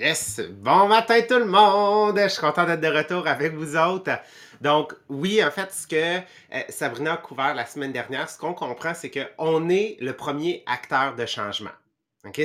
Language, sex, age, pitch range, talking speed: English, male, 30-49, 135-185 Hz, 200 wpm